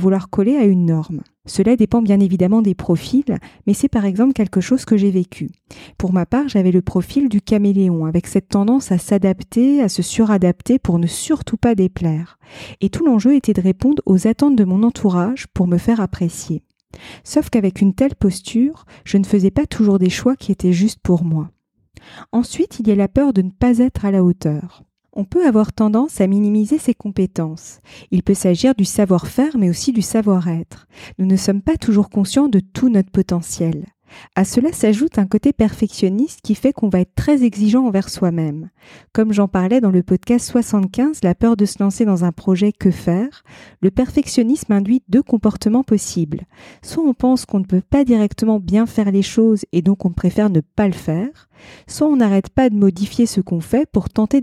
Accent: French